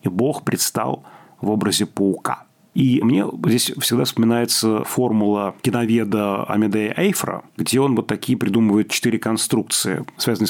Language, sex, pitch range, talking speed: Russian, male, 105-135 Hz, 125 wpm